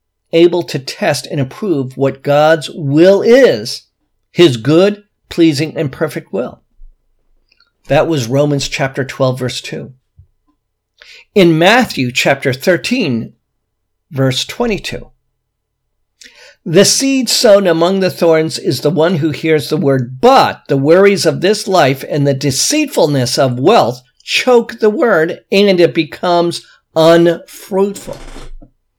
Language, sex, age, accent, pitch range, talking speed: English, male, 50-69, American, 125-170 Hz, 120 wpm